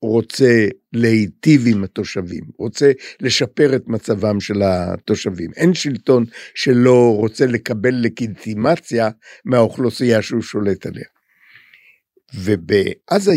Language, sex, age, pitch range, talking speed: Hebrew, male, 60-79, 110-135 Hz, 95 wpm